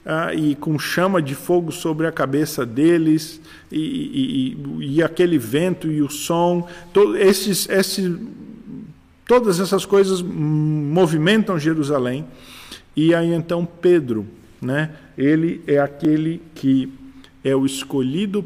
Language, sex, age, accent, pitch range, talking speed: Portuguese, male, 50-69, Brazilian, 130-170 Hz, 125 wpm